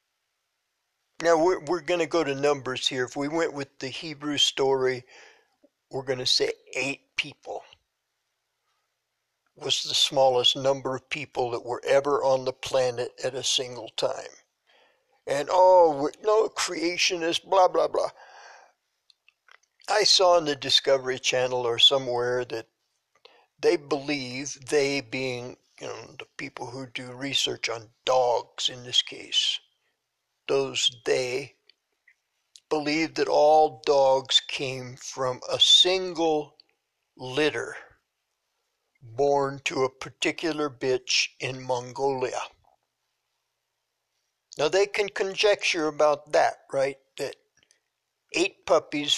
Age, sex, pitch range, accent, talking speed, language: 60-79, male, 130-160 Hz, American, 120 wpm, English